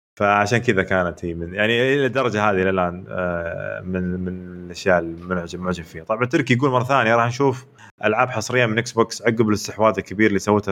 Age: 20-39